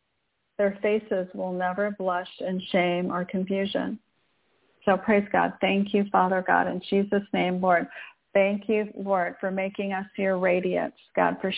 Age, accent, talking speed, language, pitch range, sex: 50-69, American, 155 wpm, English, 185-220 Hz, female